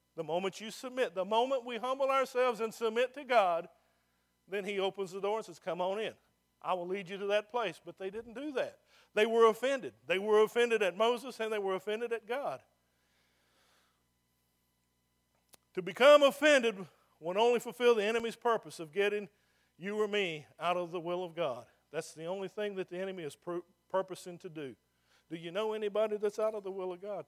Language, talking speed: English, 200 wpm